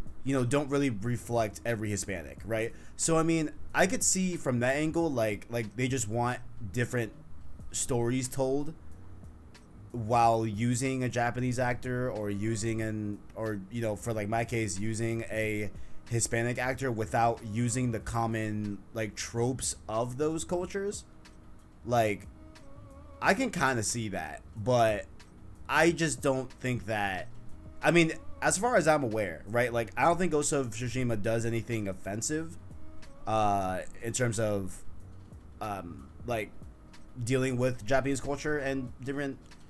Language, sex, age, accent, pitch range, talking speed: English, male, 20-39, American, 100-130 Hz, 145 wpm